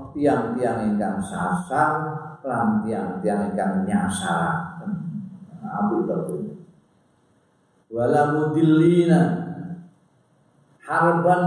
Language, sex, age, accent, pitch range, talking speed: Indonesian, male, 50-69, native, 110-170 Hz, 60 wpm